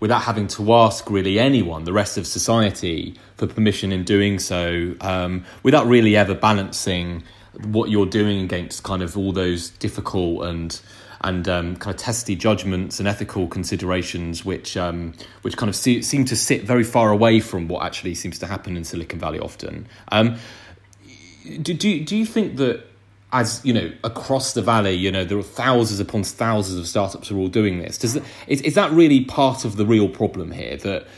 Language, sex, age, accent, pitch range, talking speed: English, male, 30-49, British, 95-115 Hz, 190 wpm